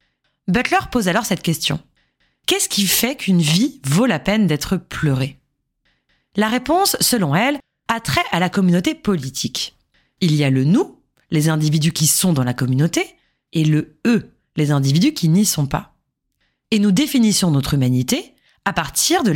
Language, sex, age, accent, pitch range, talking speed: French, female, 20-39, French, 145-215 Hz, 165 wpm